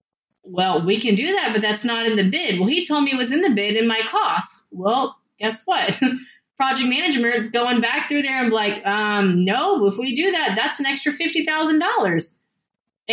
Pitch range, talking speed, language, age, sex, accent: 185-260 Hz, 200 wpm, English, 20-39, female, American